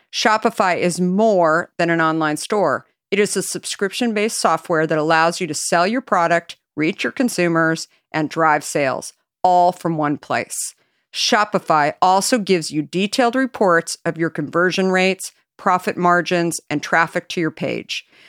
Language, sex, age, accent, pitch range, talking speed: English, female, 50-69, American, 160-200 Hz, 150 wpm